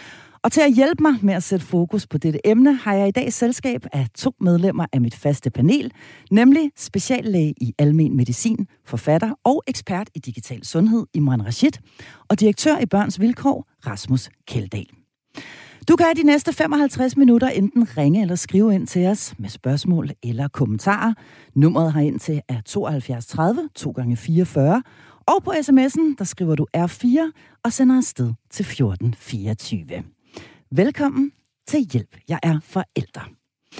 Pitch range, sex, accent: 160-245 Hz, female, native